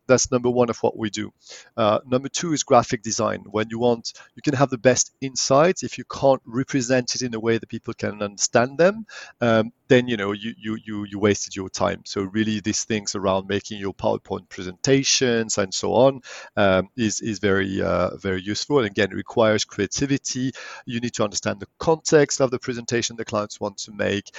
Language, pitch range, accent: English, 105-125 Hz, French